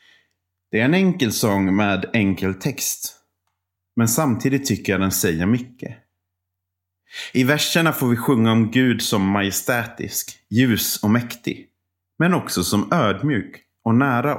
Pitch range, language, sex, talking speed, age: 90-120 Hz, Swedish, male, 140 wpm, 30-49